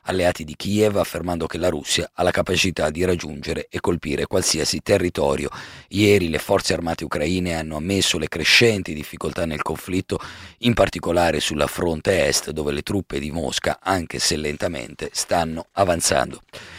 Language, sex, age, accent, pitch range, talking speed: Italian, male, 40-59, native, 85-105 Hz, 155 wpm